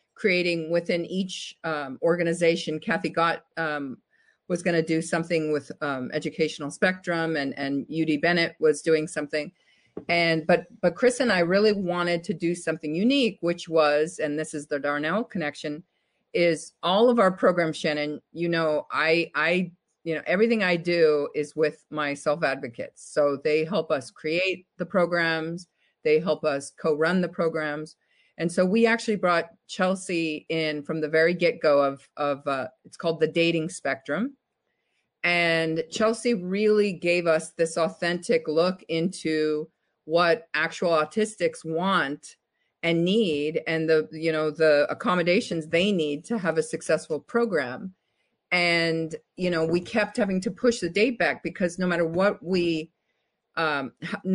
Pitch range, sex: 155-185 Hz, female